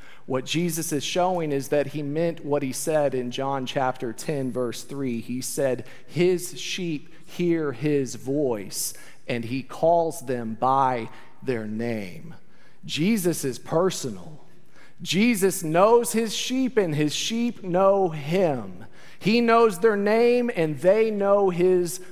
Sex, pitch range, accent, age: male, 150-205 Hz, American, 40-59